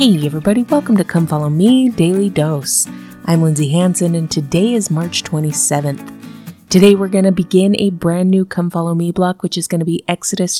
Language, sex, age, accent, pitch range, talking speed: English, female, 30-49, American, 155-185 Hz, 200 wpm